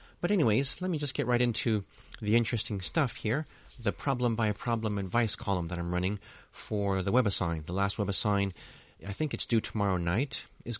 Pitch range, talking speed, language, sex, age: 95-125 Hz, 180 wpm, English, male, 30-49